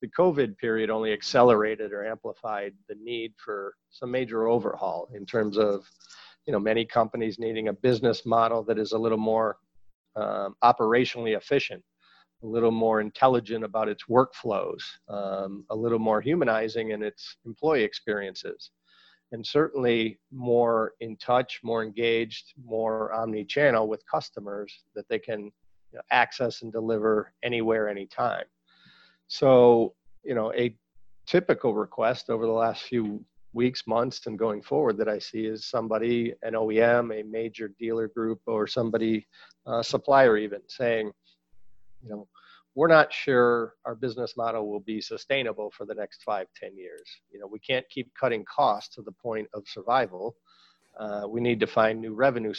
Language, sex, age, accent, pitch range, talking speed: English, male, 40-59, American, 110-120 Hz, 155 wpm